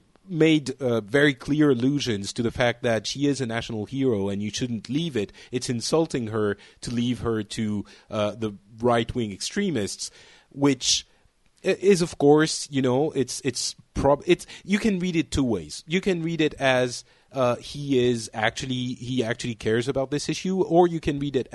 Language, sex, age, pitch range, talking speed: English, male, 30-49, 115-145 Hz, 190 wpm